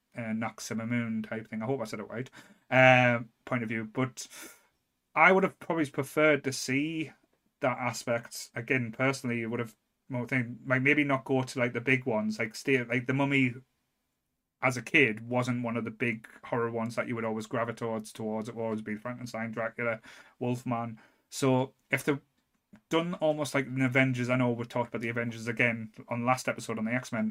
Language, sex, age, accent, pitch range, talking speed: English, male, 30-49, British, 120-140 Hz, 210 wpm